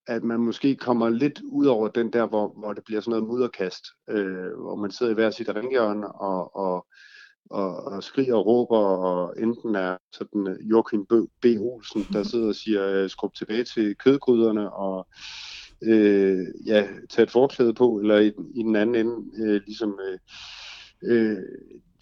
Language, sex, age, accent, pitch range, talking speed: Danish, male, 60-79, native, 100-120 Hz, 170 wpm